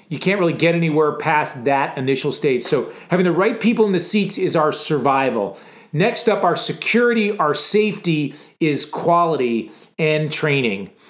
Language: English